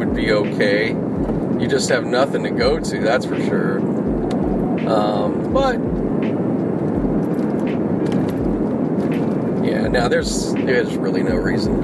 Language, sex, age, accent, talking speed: English, male, 40-59, American, 105 wpm